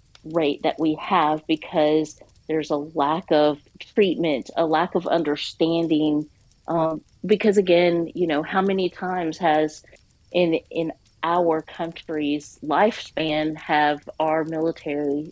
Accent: American